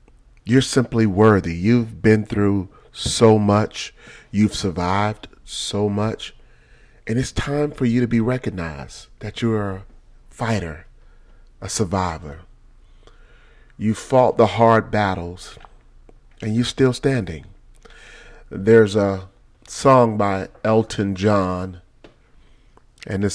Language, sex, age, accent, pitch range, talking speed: English, male, 40-59, American, 100-135 Hz, 110 wpm